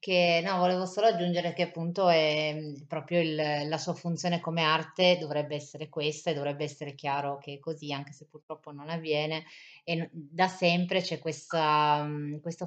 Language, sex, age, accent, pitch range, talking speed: Italian, female, 20-39, native, 150-170 Hz, 170 wpm